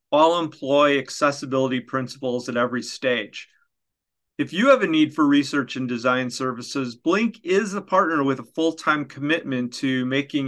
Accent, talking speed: American, 155 wpm